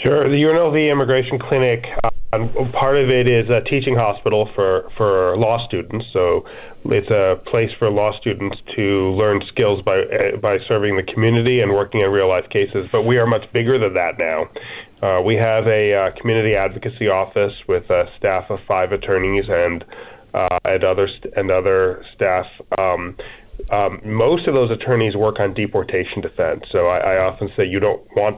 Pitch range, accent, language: 100-130 Hz, American, English